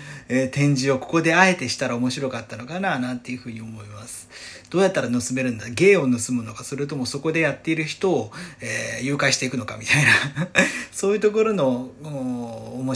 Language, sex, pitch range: Japanese, male, 120-165 Hz